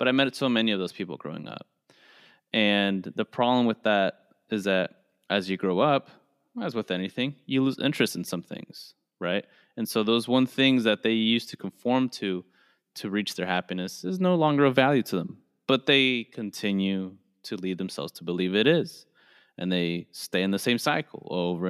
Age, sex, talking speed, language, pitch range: 20-39, male, 195 wpm, English, 95-125 Hz